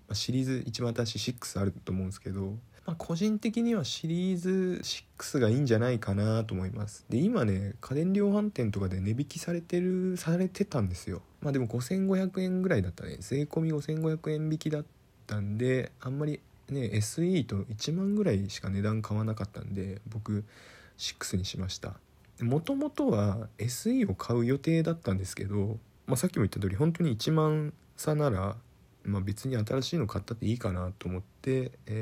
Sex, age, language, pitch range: male, 20-39, Japanese, 100-155 Hz